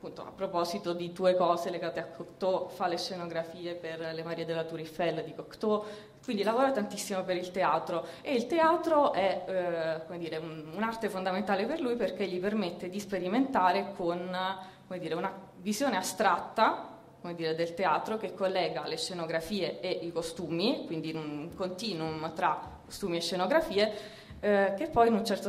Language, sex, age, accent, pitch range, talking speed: Italian, female, 20-39, native, 170-205 Hz, 165 wpm